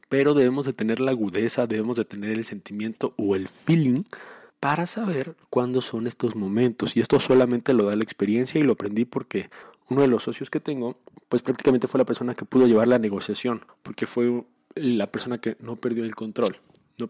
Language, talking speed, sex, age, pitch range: Spanish, 200 wpm, male, 20-39, 110-130 Hz